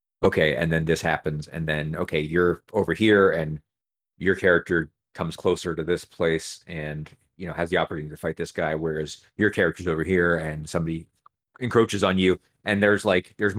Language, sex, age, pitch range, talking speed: English, male, 30-49, 80-95 Hz, 190 wpm